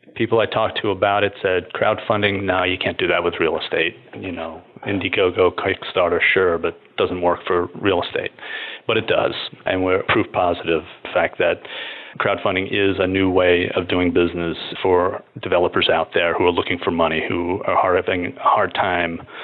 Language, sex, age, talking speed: English, male, 40-59, 190 wpm